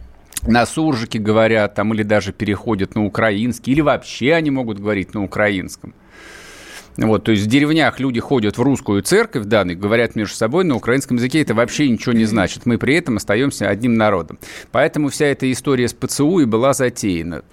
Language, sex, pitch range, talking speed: Russian, male, 110-130 Hz, 190 wpm